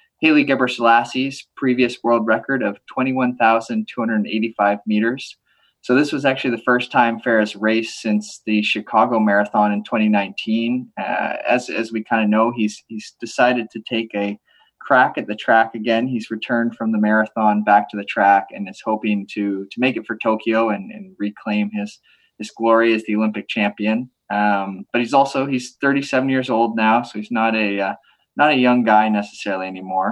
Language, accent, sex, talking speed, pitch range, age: English, American, male, 175 wpm, 105-130 Hz, 20-39